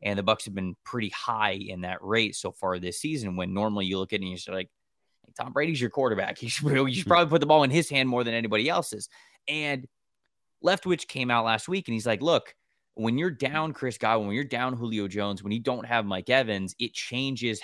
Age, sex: 20-39, male